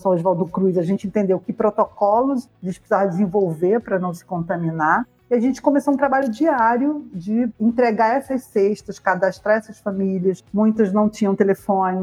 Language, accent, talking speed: Portuguese, Brazilian, 160 wpm